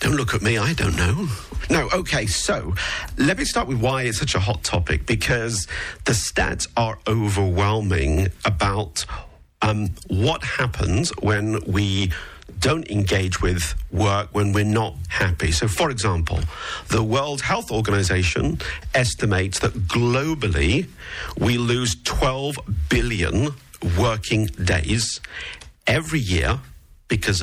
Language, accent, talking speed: English, British, 125 wpm